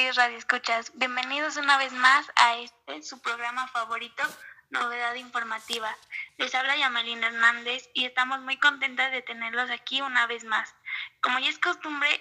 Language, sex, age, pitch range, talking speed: Spanish, female, 20-39, 235-260 Hz, 150 wpm